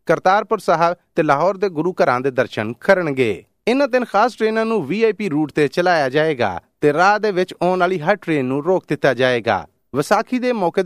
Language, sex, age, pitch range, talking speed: Punjabi, male, 30-49, 140-195 Hz, 195 wpm